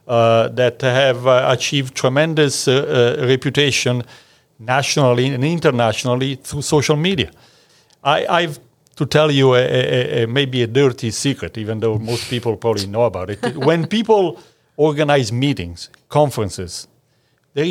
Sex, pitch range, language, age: male, 120-155 Hz, English, 50-69